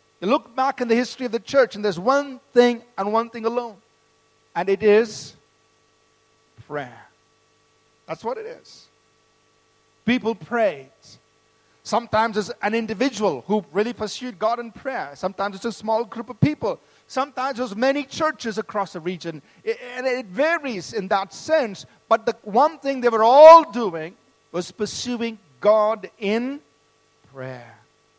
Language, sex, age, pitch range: English, male, 50-69, 200-250 Hz